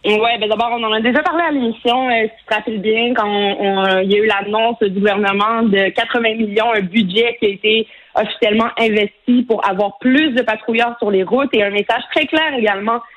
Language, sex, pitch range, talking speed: French, female, 210-250 Hz, 230 wpm